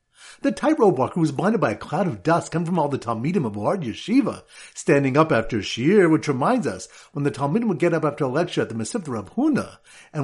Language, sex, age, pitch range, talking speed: English, male, 50-69, 140-200 Hz, 240 wpm